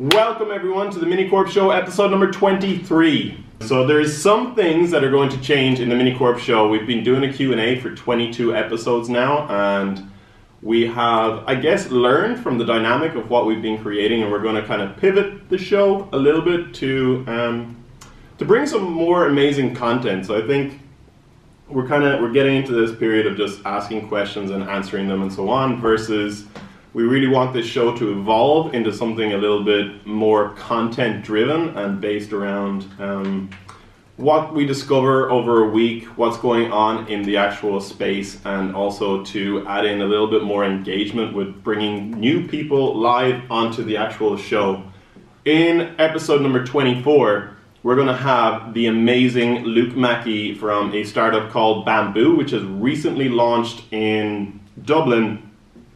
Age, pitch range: 20-39, 105-135 Hz